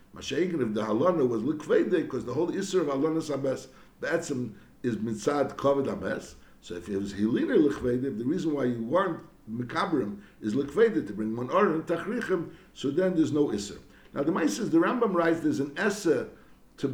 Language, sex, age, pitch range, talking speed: English, male, 60-79, 135-175 Hz, 190 wpm